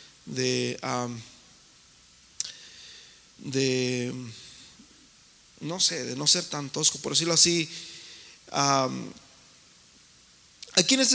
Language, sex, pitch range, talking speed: Spanish, male, 160-235 Hz, 90 wpm